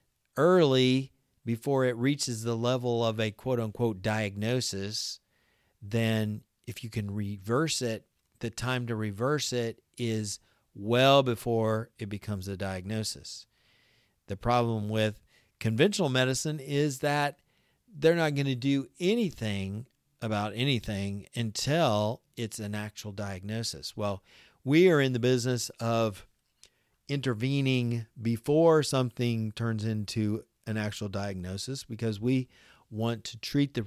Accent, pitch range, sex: American, 105-125 Hz, male